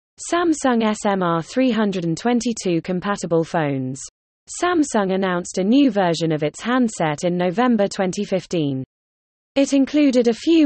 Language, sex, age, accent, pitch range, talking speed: English, female, 20-39, British, 165-235 Hz, 115 wpm